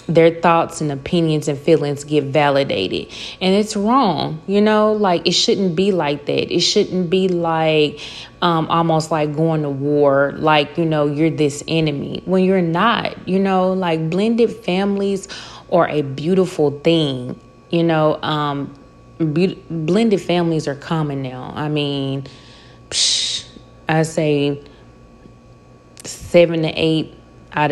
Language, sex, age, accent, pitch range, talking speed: English, female, 30-49, American, 140-165 Hz, 135 wpm